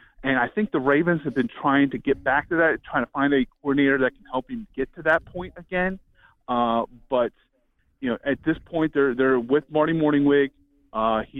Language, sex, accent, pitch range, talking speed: English, male, American, 125-175 Hz, 215 wpm